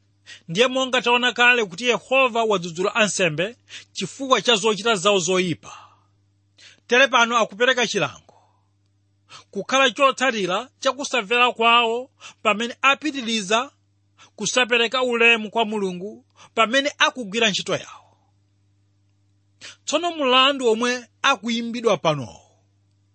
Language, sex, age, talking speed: English, male, 40-59, 100 wpm